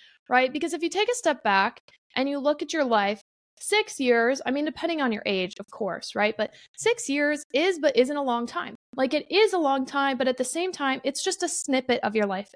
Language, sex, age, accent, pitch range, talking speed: English, female, 20-39, American, 235-315 Hz, 250 wpm